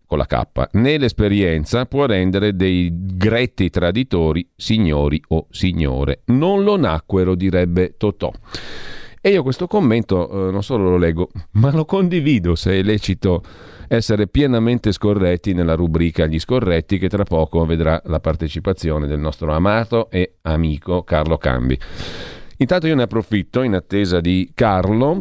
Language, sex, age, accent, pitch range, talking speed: Italian, male, 40-59, native, 80-100 Hz, 145 wpm